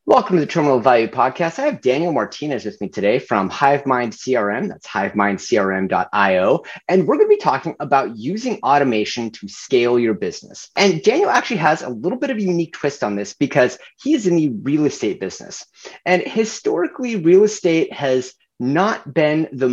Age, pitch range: 30-49, 115-170 Hz